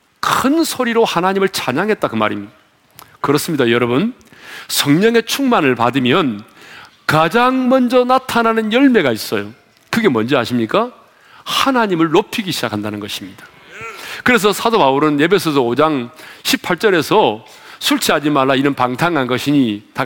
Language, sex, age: Korean, male, 40-59